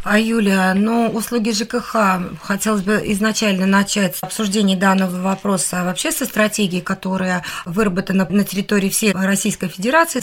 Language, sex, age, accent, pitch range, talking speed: Russian, female, 20-39, native, 190-220 Hz, 130 wpm